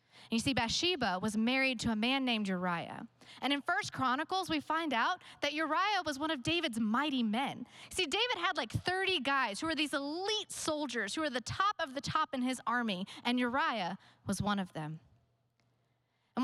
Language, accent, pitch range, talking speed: English, American, 220-325 Hz, 195 wpm